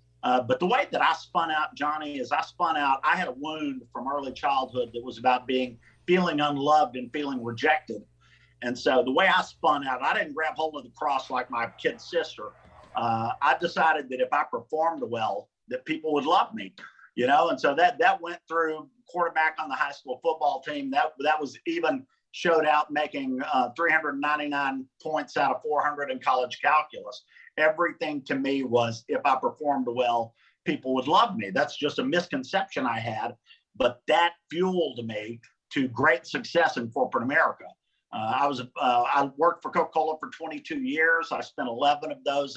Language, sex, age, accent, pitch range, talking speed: English, male, 50-69, American, 130-170 Hz, 190 wpm